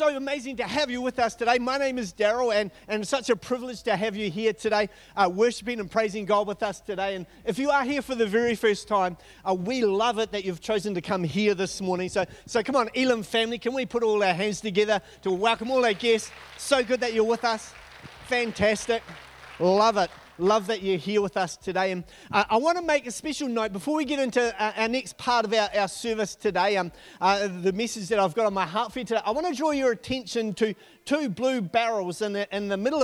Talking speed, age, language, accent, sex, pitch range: 245 wpm, 30-49, English, Australian, male, 195-235 Hz